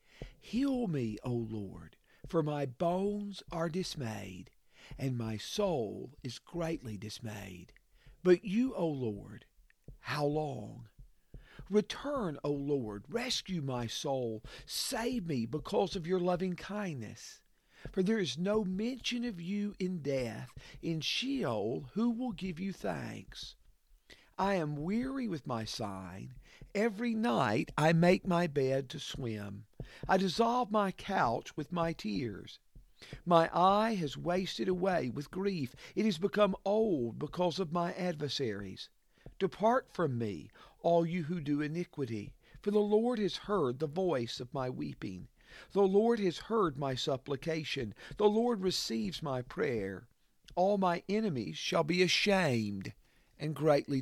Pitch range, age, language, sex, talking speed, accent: 130-195 Hz, 50-69, English, male, 135 wpm, American